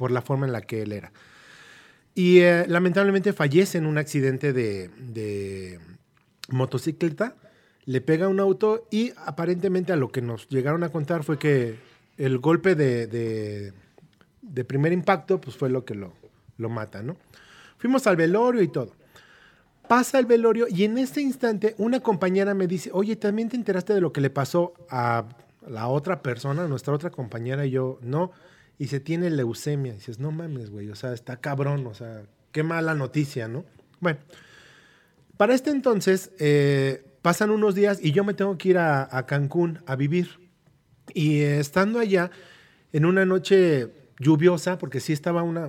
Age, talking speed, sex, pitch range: 30-49, 175 wpm, male, 130-185 Hz